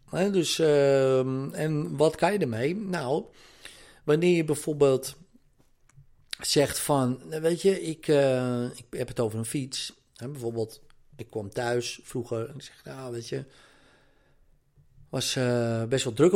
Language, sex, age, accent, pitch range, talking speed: Dutch, male, 40-59, Dutch, 120-155 Hz, 150 wpm